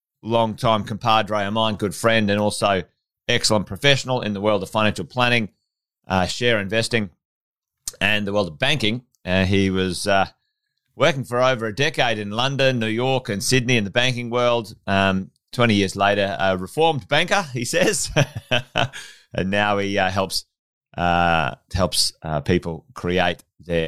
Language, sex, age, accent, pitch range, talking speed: English, male, 30-49, Australian, 100-135 Hz, 160 wpm